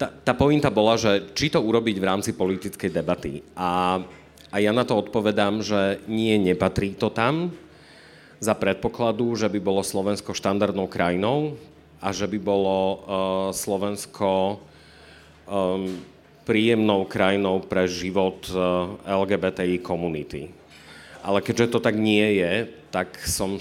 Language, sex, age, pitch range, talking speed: Slovak, male, 40-59, 90-105 Hz, 125 wpm